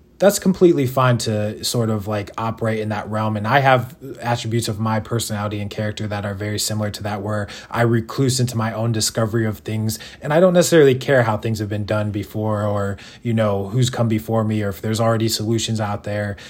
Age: 20-39